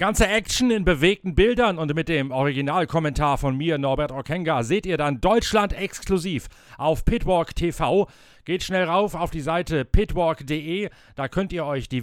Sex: male